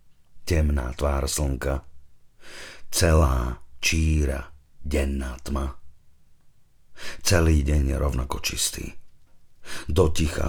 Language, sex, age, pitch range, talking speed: Slovak, male, 50-69, 70-80 Hz, 80 wpm